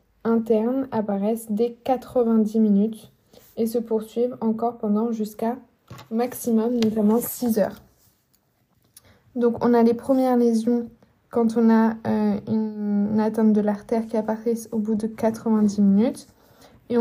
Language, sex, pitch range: French, female, 215-235 Hz